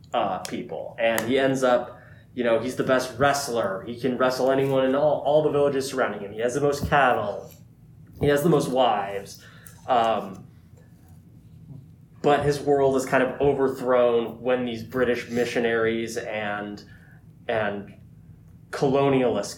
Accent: American